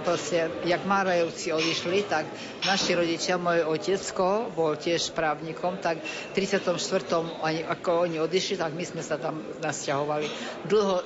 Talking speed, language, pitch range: 135 wpm, Slovak, 160-180 Hz